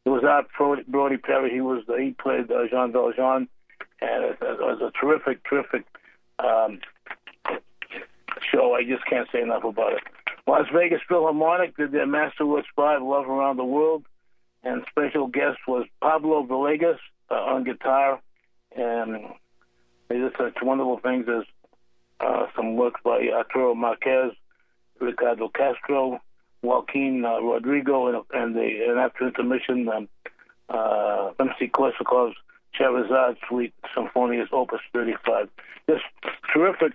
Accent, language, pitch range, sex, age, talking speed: American, English, 120-150 Hz, male, 50-69, 140 wpm